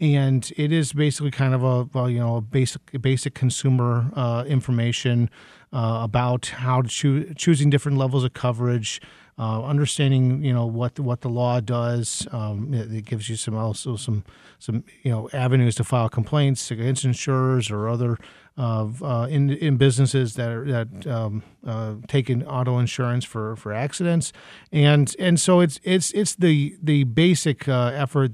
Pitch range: 115-135 Hz